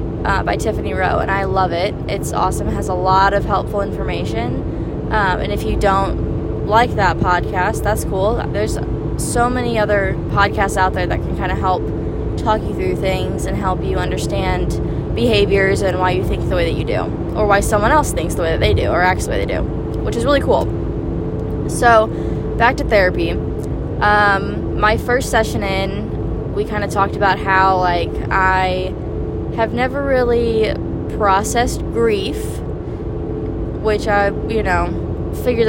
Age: 10-29